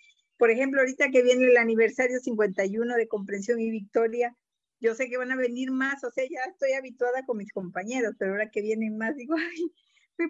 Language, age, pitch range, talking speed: Spanish, 50-69, 210-265 Hz, 205 wpm